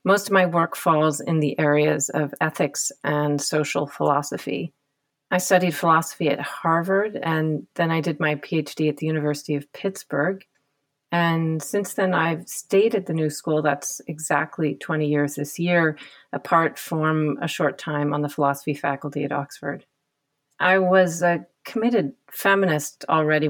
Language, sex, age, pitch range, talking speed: English, female, 40-59, 145-165 Hz, 155 wpm